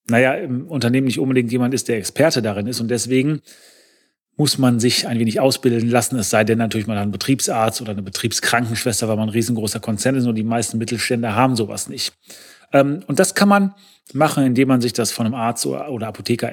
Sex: male